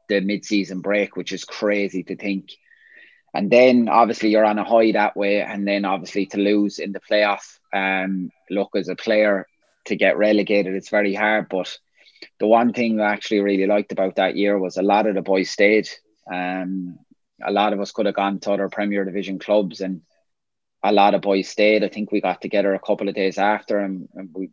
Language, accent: English, Irish